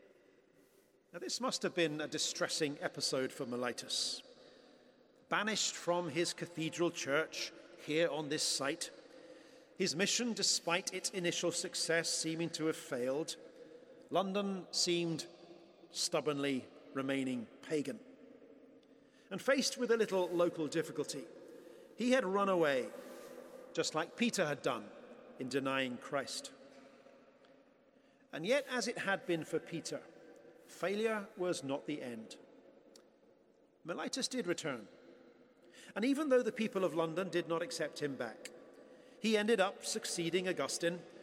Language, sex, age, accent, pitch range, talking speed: English, male, 40-59, British, 155-210 Hz, 125 wpm